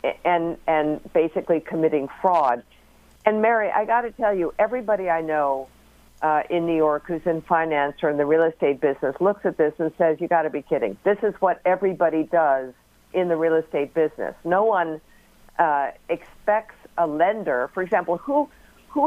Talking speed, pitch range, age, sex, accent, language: 185 wpm, 160-195 Hz, 50-69, female, American, English